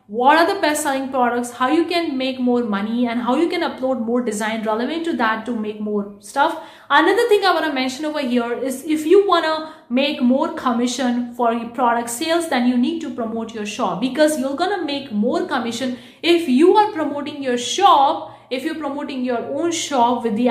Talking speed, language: 215 wpm, English